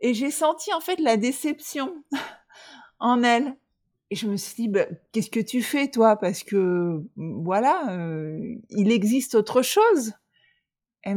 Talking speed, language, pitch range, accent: 155 wpm, French, 175-230 Hz, French